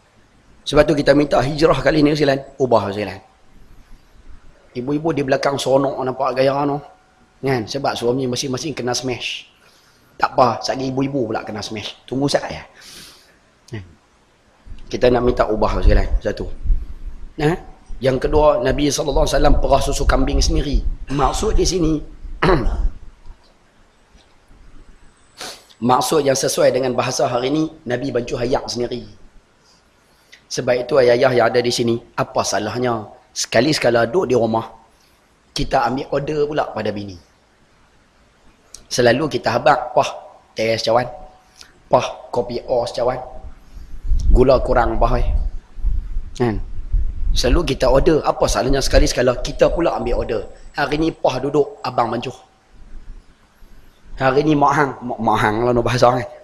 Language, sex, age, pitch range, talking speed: Malay, male, 30-49, 105-140 Hz, 130 wpm